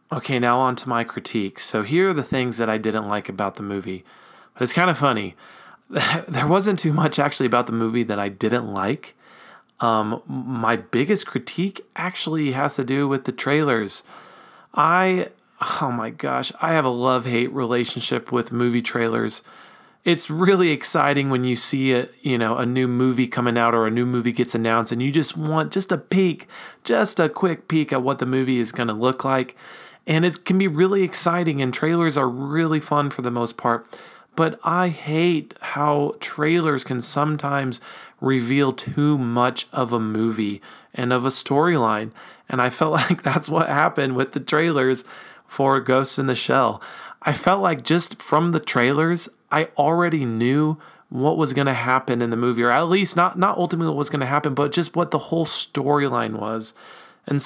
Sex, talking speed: male, 190 wpm